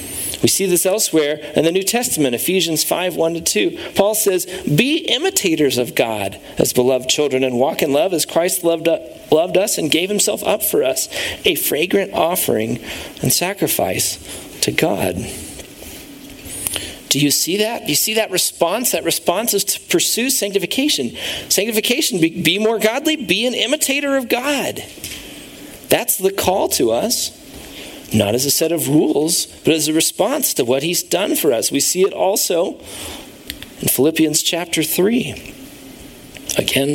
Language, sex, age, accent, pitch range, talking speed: English, male, 40-59, American, 150-210 Hz, 155 wpm